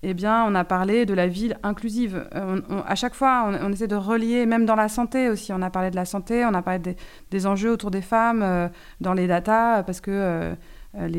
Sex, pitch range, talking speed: female, 180-215 Hz, 245 wpm